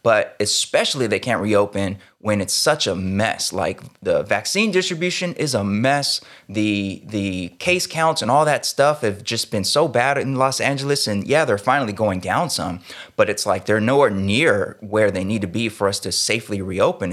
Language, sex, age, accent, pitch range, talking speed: English, male, 20-39, American, 100-135 Hz, 195 wpm